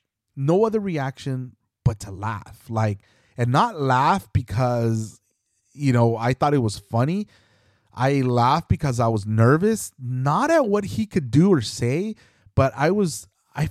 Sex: male